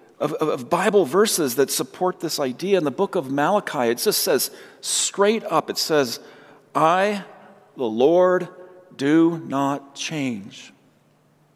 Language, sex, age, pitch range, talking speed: English, male, 40-59, 140-185 Hz, 135 wpm